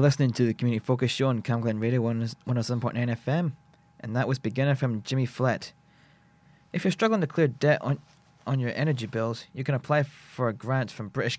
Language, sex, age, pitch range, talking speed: English, male, 20-39, 115-150 Hz, 195 wpm